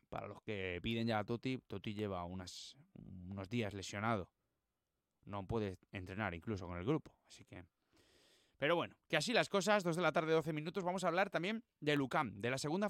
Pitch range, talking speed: 115-175 Hz, 200 wpm